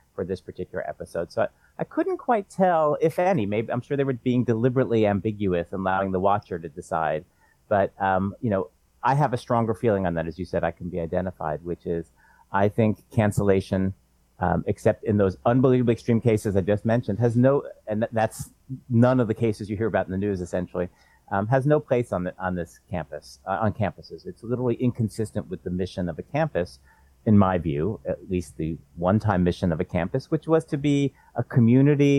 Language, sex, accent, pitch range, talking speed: English, male, American, 95-130 Hz, 215 wpm